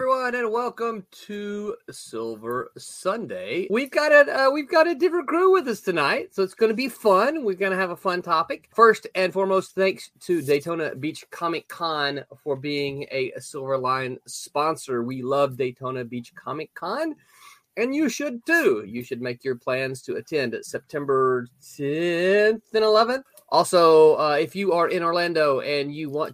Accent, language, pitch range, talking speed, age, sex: American, English, 135-220 Hz, 175 wpm, 30-49, male